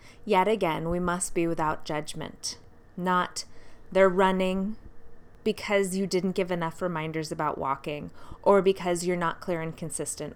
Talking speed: 145 wpm